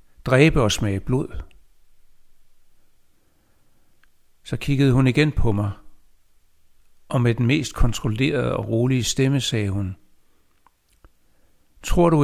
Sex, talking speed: male, 110 wpm